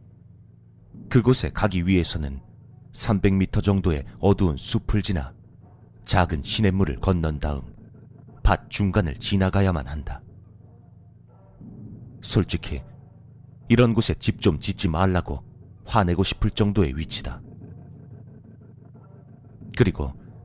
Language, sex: Korean, male